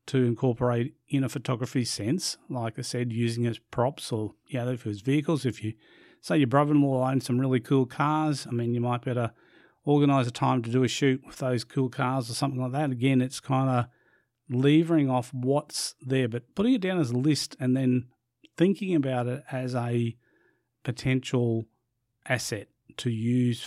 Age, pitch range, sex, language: 40-59, 120-140 Hz, male, English